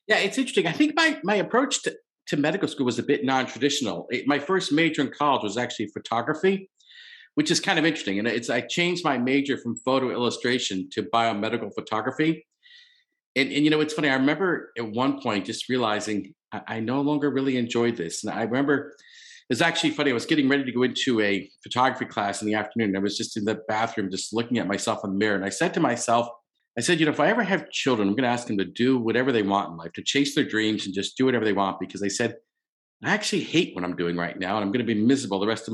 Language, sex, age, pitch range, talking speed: English, male, 50-69, 110-150 Hz, 255 wpm